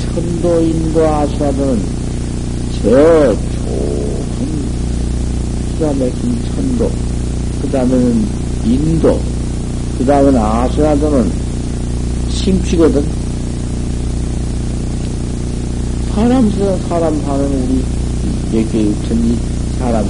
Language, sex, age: Korean, male, 60-79